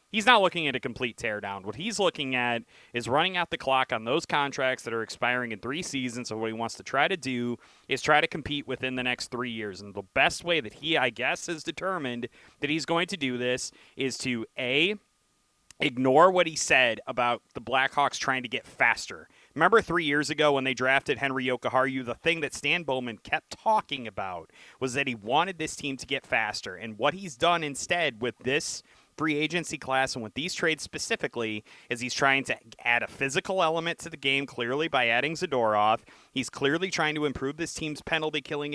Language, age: English, 30-49